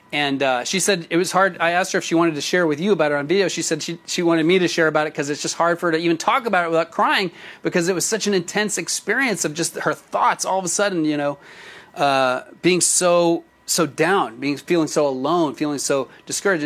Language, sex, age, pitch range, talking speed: English, male, 30-49, 155-190 Hz, 265 wpm